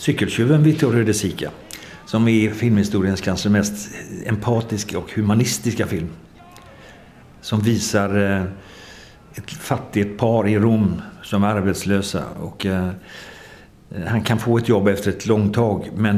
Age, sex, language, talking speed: 60-79, male, Finnish, 135 wpm